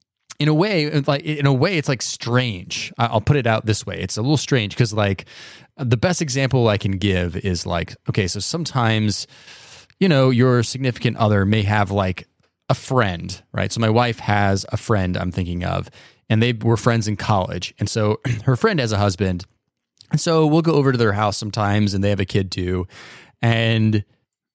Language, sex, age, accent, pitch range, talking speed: English, male, 20-39, American, 100-130 Hz, 200 wpm